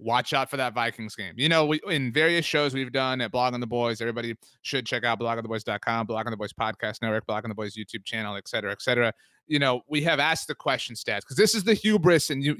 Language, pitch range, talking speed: English, 115-150 Hz, 275 wpm